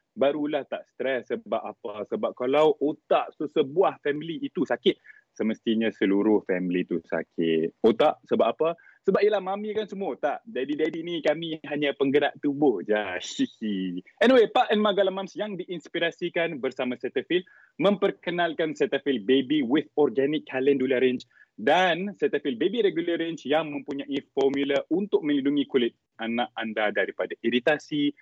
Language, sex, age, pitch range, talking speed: Malay, male, 30-49, 135-190 Hz, 135 wpm